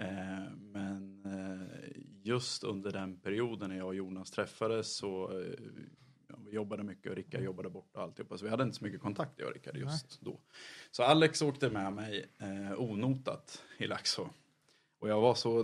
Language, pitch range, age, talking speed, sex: Swedish, 95-115 Hz, 20-39, 160 wpm, male